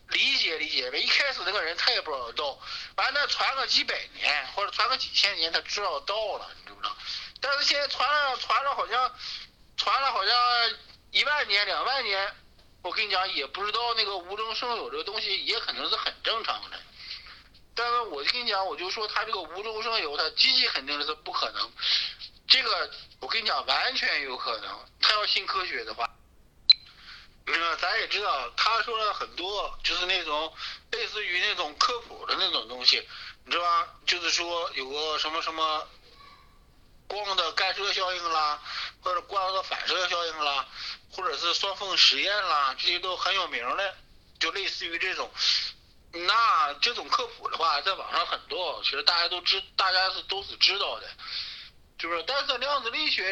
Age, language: 50-69, Chinese